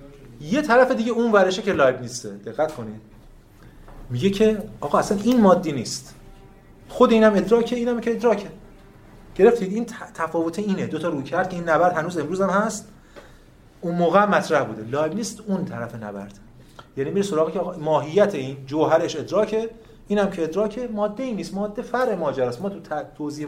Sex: male